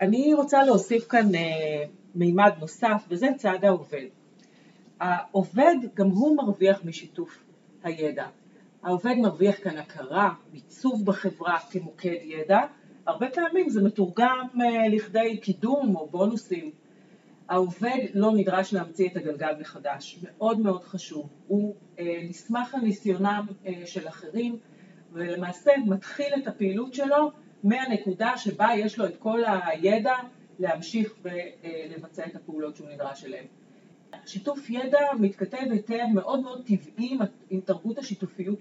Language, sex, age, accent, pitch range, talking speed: Hebrew, female, 40-59, native, 180-235 Hz, 120 wpm